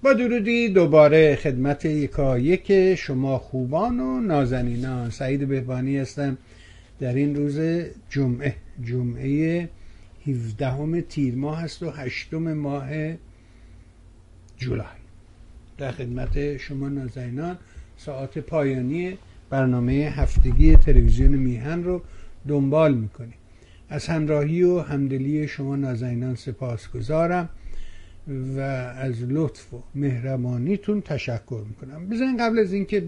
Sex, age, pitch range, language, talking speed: male, 60-79, 120-150 Hz, Persian, 105 wpm